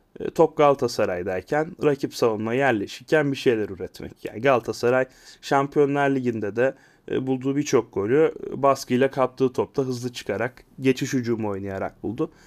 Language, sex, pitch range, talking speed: Turkish, male, 125-155 Hz, 120 wpm